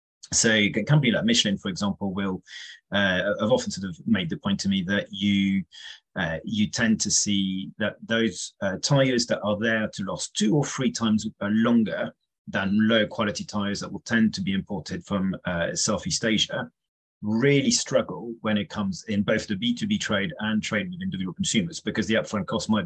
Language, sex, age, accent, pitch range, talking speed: English, male, 30-49, British, 100-170 Hz, 190 wpm